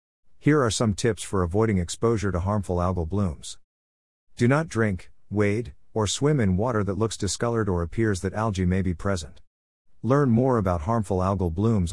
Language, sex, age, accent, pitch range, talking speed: English, male, 50-69, American, 90-115 Hz, 175 wpm